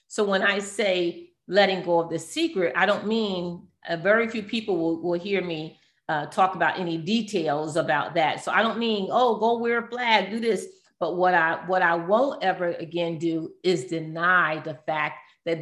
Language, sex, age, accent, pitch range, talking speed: English, female, 40-59, American, 160-200 Hz, 195 wpm